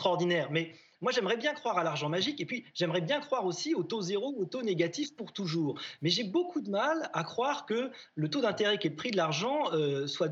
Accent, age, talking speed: French, 30-49, 250 wpm